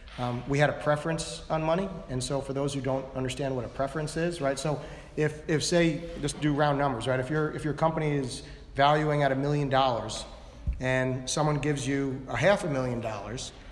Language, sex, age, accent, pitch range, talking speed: English, male, 40-59, American, 130-150 Hz, 210 wpm